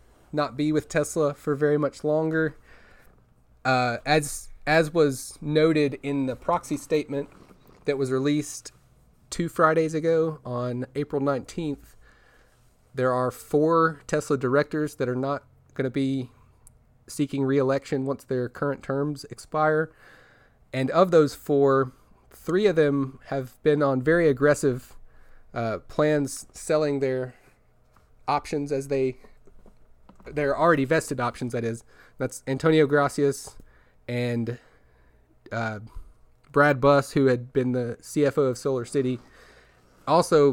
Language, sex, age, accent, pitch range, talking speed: English, male, 30-49, American, 125-150 Hz, 125 wpm